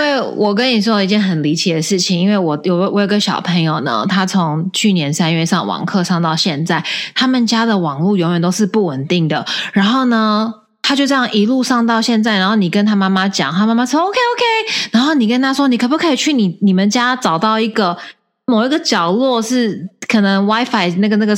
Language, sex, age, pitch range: Chinese, female, 20-39, 190-255 Hz